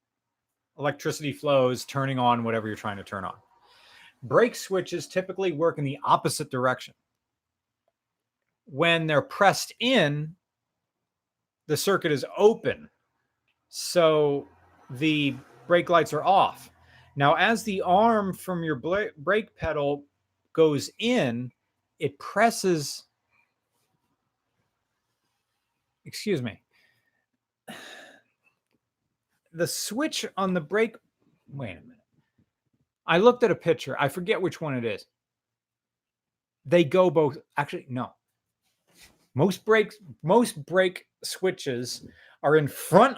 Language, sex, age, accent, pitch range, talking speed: English, male, 30-49, American, 140-190 Hz, 110 wpm